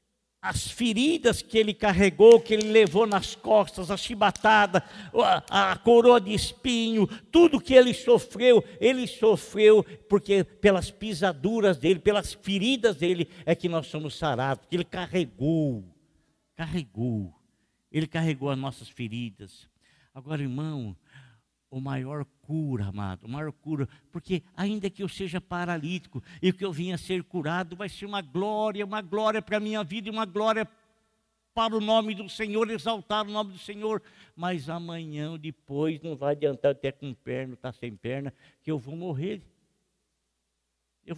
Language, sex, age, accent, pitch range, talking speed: Portuguese, male, 60-79, Brazilian, 140-215 Hz, 150 wpm